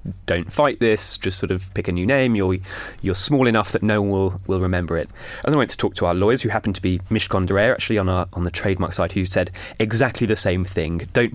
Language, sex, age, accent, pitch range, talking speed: English, male, 20-39, British, 90-110 Hz, 260 wpm